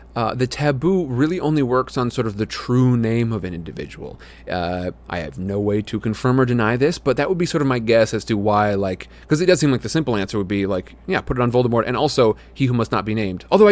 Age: 30-49